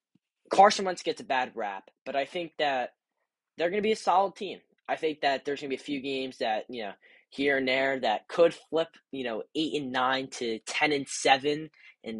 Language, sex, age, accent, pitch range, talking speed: English, male, 10-29, American, 130-170 Hz, 225 wpm